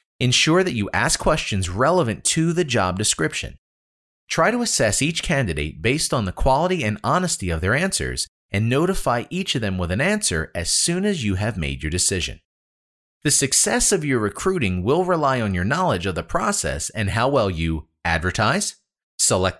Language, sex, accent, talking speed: English, male, American, 180 wpm